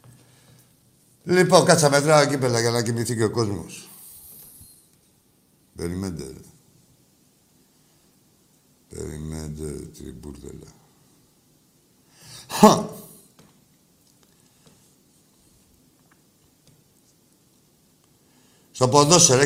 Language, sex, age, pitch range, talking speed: Greek, male, 60-79, 95-130 Hz, 55 wpm